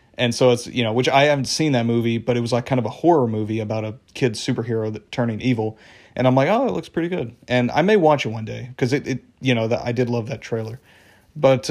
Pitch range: 110-130 Hz